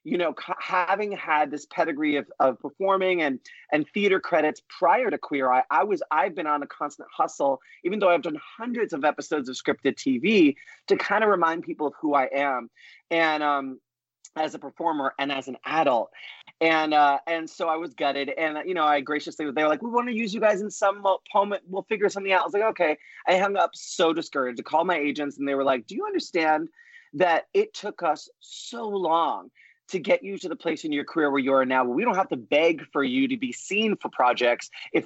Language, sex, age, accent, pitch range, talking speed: English, male, 30-49, American, 145-210 Hz, 230 wpm